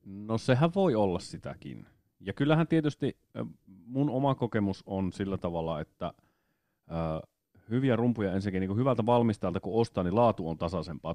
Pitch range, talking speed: 90-115 Hz, 150 wpm